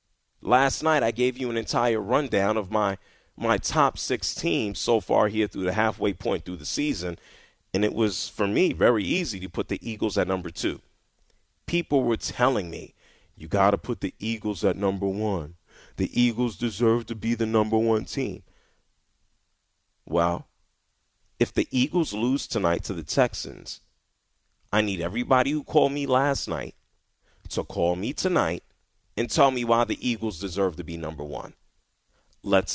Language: English